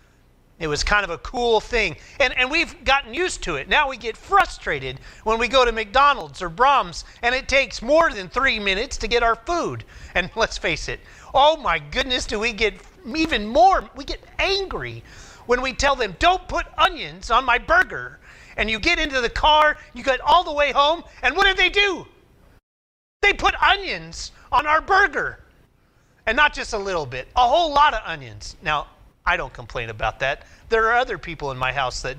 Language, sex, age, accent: English, male, 30-49, American